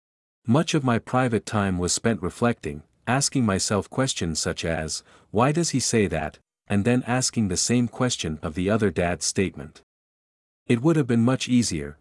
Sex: male